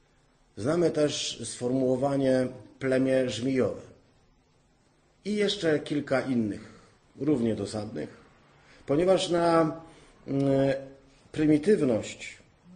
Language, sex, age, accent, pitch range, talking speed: Polish, male, 40-59, native, 120-150 Hz, 70 wpm